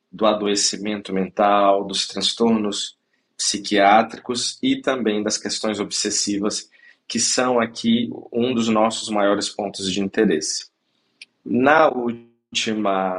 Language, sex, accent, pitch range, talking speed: Portuguese, male, Brazilian, 100-120 Hz, 105 wpm